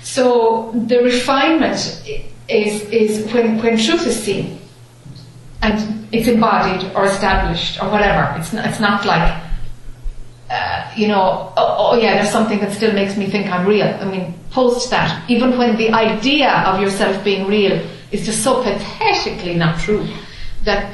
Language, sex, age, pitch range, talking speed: English, female, 30-49, 170-225 Hz, 160 wpm